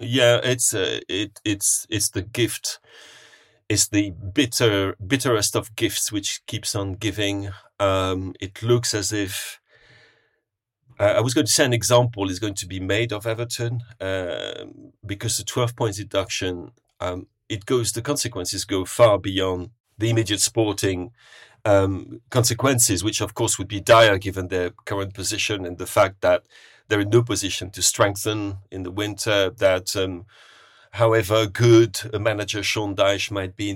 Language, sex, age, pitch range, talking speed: English, male, 40-59, 95-115 Hz, 165 wpm